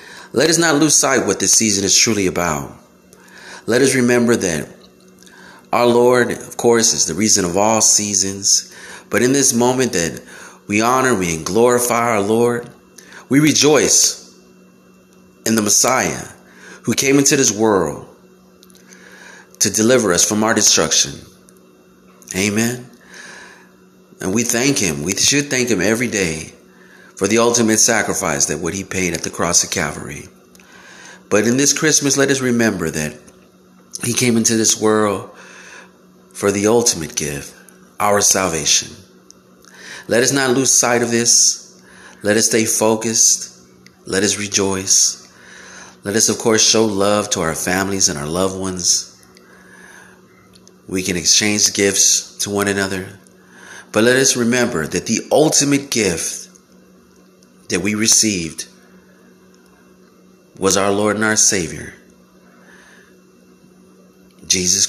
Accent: American